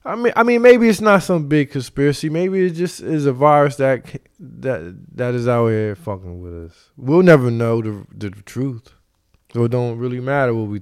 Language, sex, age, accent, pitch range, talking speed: English, male, 20-39, American, 105-145 Hz, 215 wpm